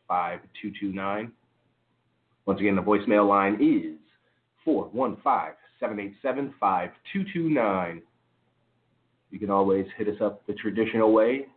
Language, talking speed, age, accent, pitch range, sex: English, 85 wpm, 30-49, American, 100-130 Hz, male